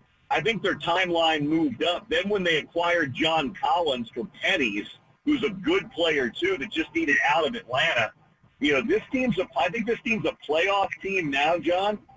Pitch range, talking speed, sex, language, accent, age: 155-215 Hz, 190 wpm, male, English, American, 50-69